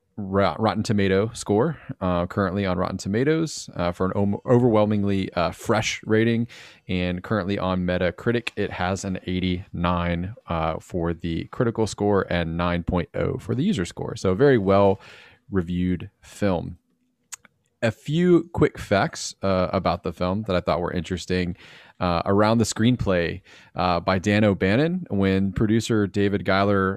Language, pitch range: English, 90-115 Hz